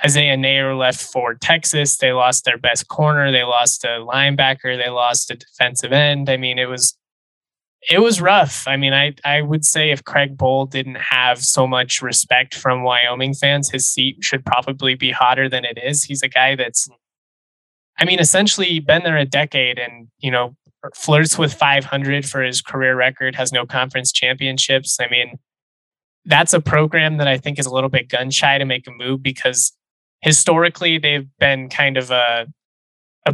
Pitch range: 125-145 Hz